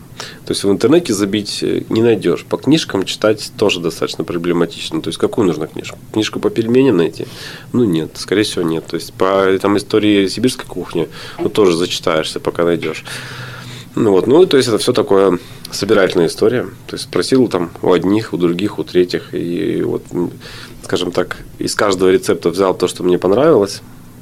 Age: 20-39